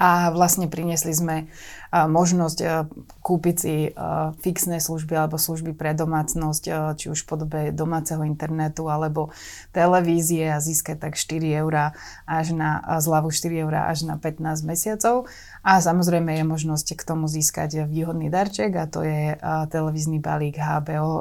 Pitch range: 155-170 Hz